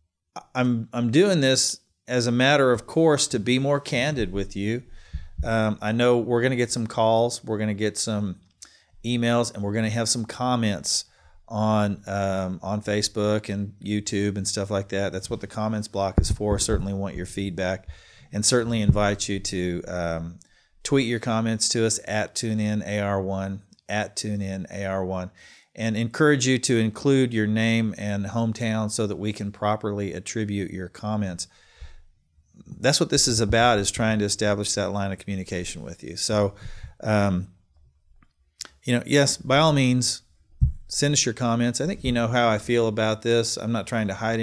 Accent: American